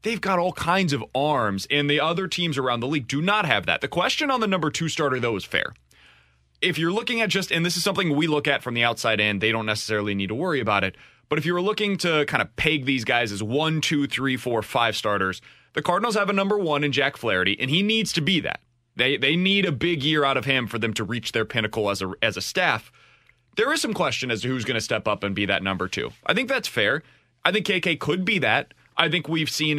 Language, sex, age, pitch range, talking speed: English, male, 30-49, 115-175 Hz, 270 wpm